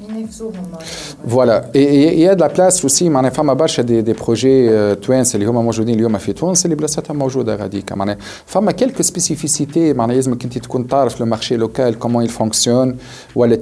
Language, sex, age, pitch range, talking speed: Arabic, male, 40-59, 110-135 Hz, 245 wpm